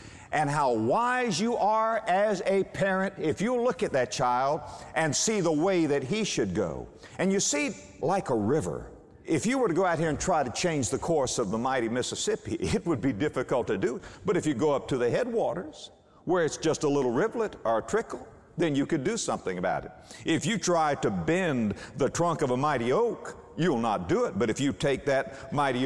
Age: 50-69